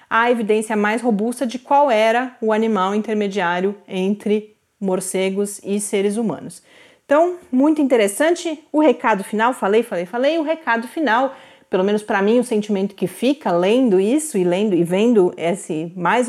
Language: Portuguese